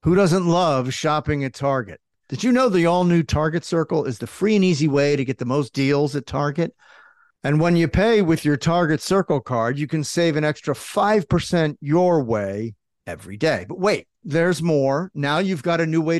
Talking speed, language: 205 wpm, English